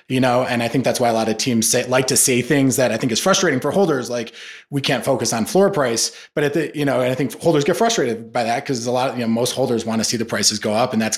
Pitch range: 115-145 Hz